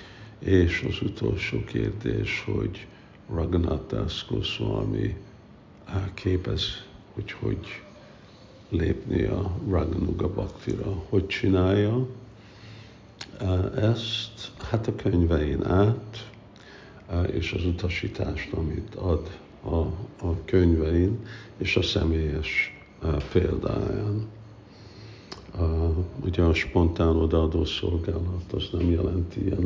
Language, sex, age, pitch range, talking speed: Hungarian, male, 60-79, 90-105 Hz, 85 wpm